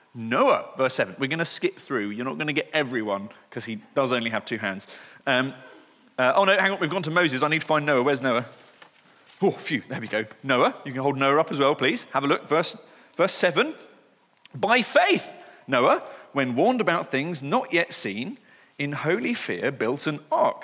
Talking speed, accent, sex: 215 wpm, British, male